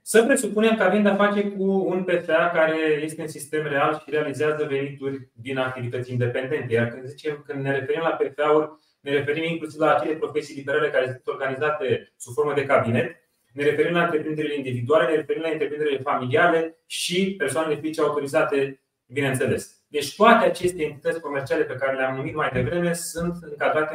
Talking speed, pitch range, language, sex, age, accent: 175 wpm, 150-185 Hz, Romanian, male, 30-49, native